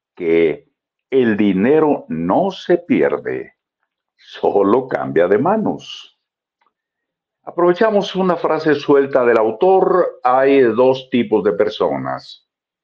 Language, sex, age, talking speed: Spanish, male, 60-79, 100 wpm